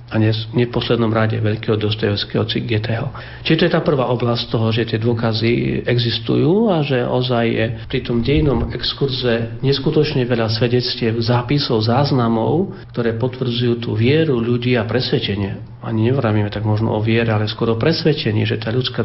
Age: 40-59